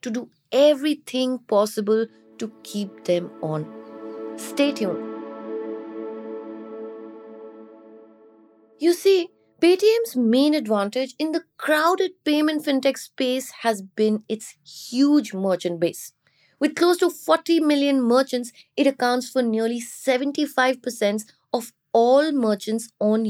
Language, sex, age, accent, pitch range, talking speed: English, female, 20-39, Indian, 200-285 Hz, 110 wpm